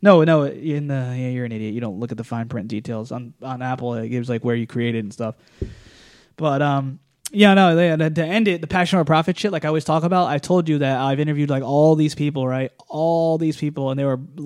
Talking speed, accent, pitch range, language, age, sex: 265 wpm, American, 130-155 Hz, English, 20-39, male